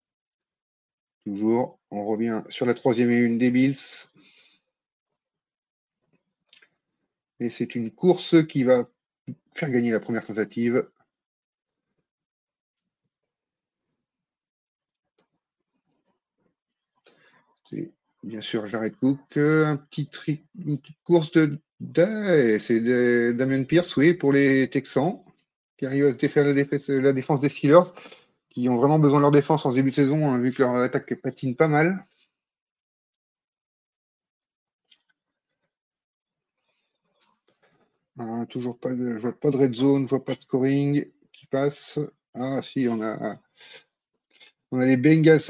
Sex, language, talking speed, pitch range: male, French, 125 wpm, 130-155 Hz